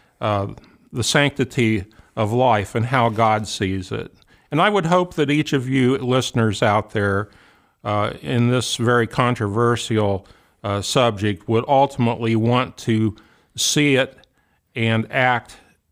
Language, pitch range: English, 110-135 Hz